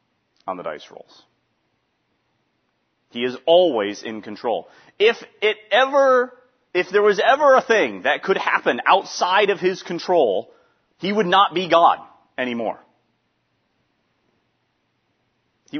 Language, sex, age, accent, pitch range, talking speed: English, male, 30-49, American, 135-200 Hz, 120 wpm